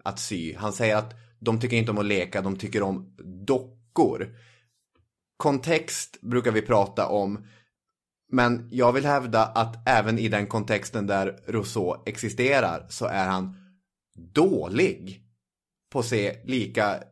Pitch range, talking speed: 100-125 Hz, 135 wpm